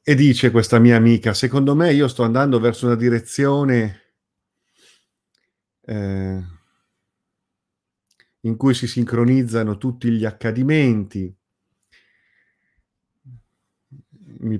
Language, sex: Italian, male